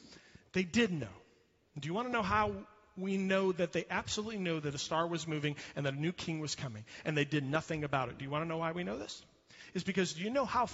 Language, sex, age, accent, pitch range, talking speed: English, male, 40-59, American, 145-205 Hz, 270 wpm